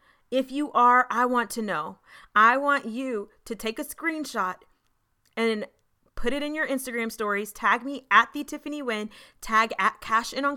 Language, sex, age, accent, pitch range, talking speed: English, female, 30-49, American, 200-255 Hz, 180 wpm